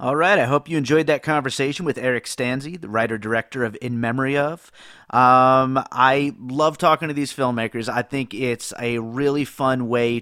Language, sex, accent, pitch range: English, male, American, 115-140 Hz